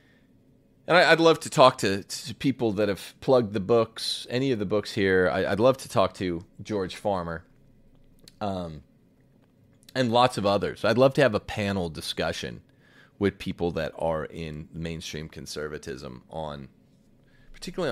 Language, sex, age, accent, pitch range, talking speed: English, male, 30-49, American, 90-130 Hz, 155 wpm